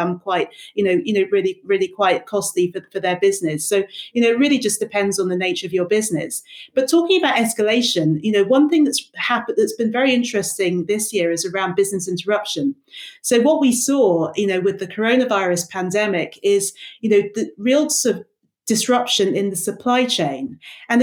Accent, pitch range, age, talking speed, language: British, 180-230 Hz, 30-49, 195 wpm, English